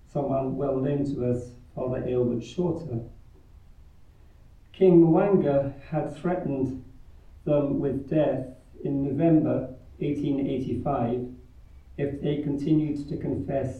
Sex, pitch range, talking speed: male, 115-145 Hz, 95 wpm